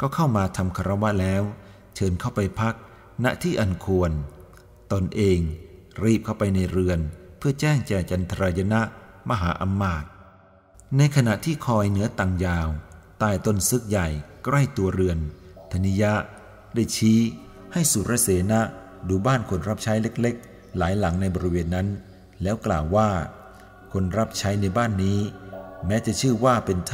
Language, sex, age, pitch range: Thai, male, 60-79, 90-110 Hz